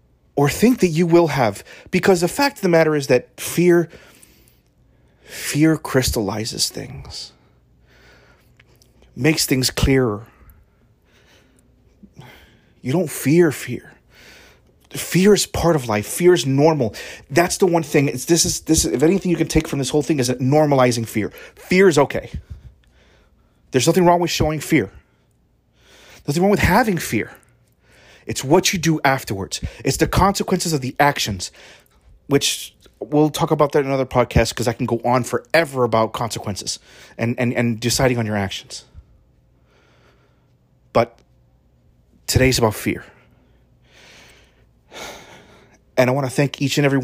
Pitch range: 110-160 Hz